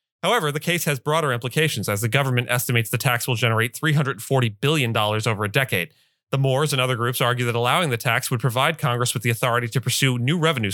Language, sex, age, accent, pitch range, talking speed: English, male, 30-49, American, 115-135 Hz, 220 wpm